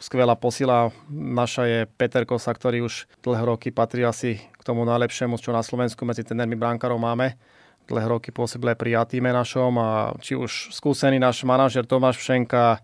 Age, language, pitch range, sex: 30-49, Slovak, 115-125 Hz, male